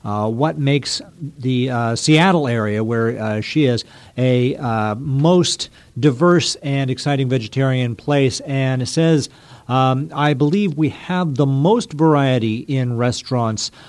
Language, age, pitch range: English, 50-69, 125-155 Hz